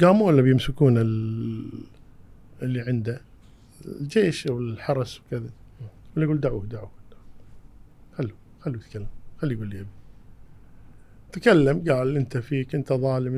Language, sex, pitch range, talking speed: Arabic, male, 110-140 Hz, 110 wpm